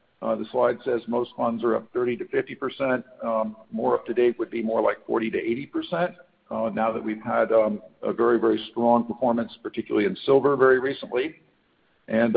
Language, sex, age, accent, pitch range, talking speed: English, male, 50-69, American, 115-160 Hz, 205 wpm